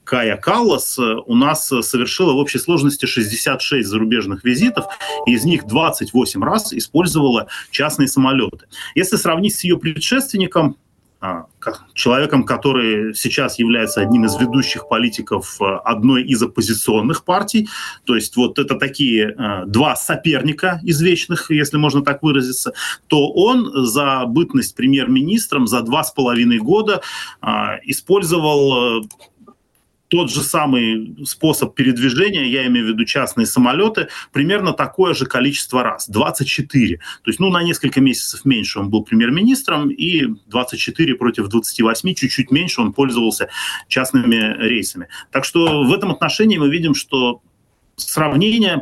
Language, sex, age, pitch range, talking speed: Russian, male, 30-49, 115-170 Hz, 130 wpm